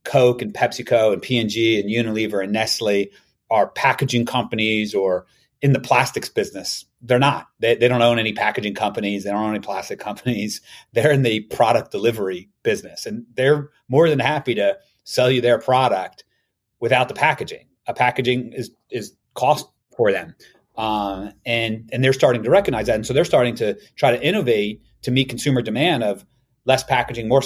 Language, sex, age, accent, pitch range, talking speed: English, male, 30-49, American, 105-130 Hz, 180 wpm